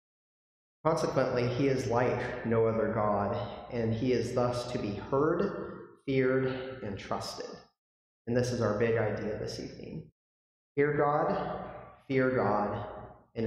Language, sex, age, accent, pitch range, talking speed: English, male, 30-49, American, 105-135 Hz, 135 wpm